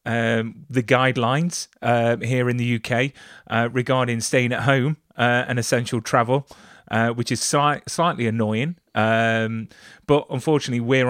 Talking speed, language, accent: 145 wpm, English, British